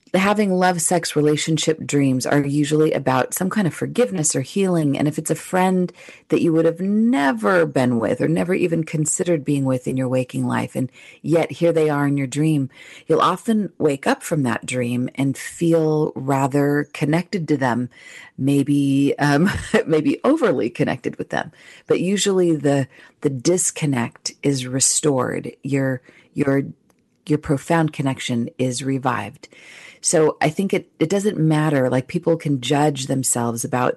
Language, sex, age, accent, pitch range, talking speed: English, female, 40-59, American, 130-165 Hz, 165 wpm